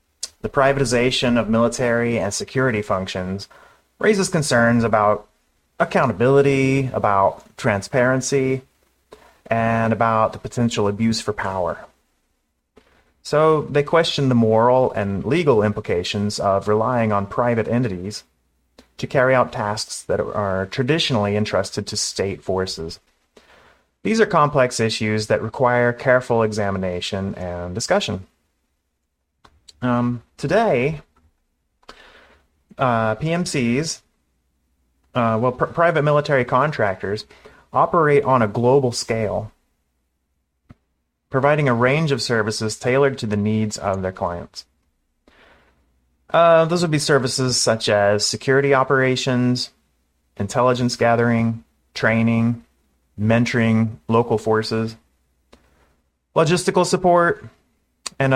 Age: 30-49